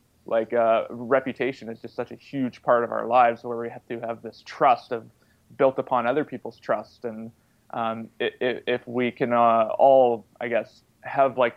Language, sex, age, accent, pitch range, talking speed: English, male, 20-39, American, 115-130 Hz, 195 wpm